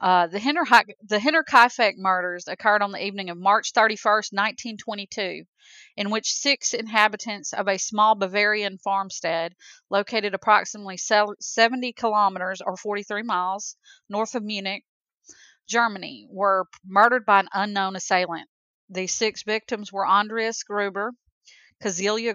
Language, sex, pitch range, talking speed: English, female, 190-220 Hz, 135 wpm